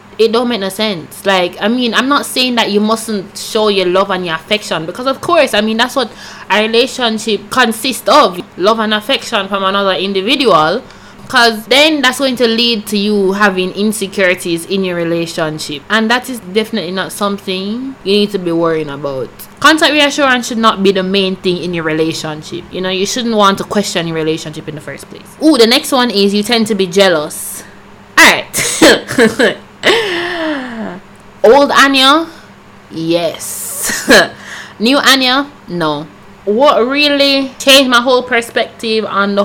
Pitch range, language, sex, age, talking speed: 185-235 Hz, English, female, 20-39, 170 wpm